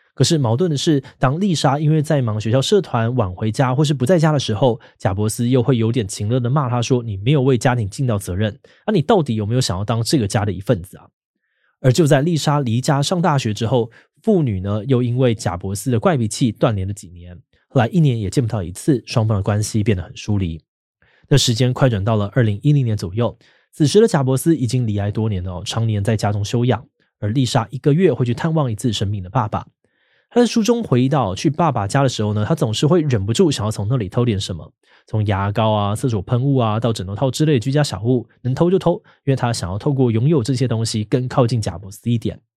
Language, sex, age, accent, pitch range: Chinese, male, 20-39, native, 105-145 Hz